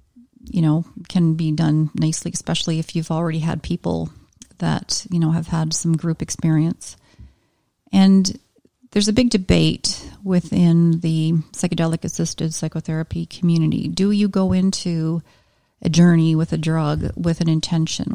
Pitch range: 160-190 Hz